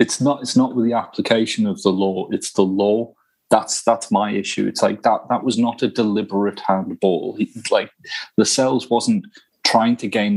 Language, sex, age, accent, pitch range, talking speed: English, male, 30-49, British, 100-125 Hz, 195 wpm